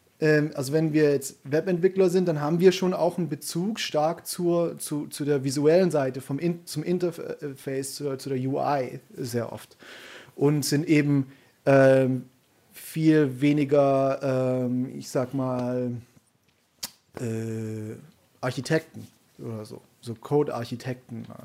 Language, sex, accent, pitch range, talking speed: German, male, German, 125-155 Hz, 120 wpm